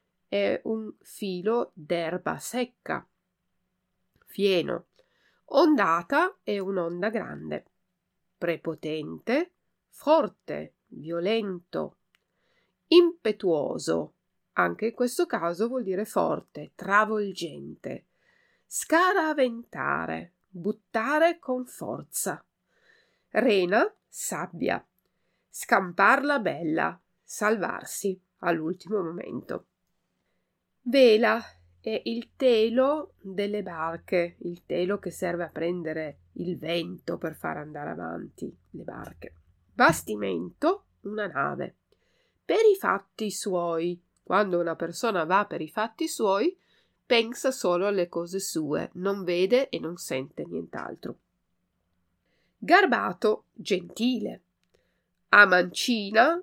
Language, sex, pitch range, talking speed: Italian, female, 170-235 Hz, 90 wpm